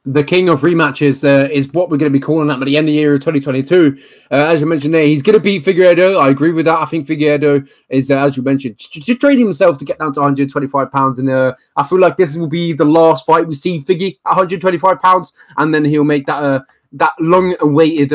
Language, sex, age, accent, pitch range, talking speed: English, male, 20-39, British, 135-160 Hz, 245 wpm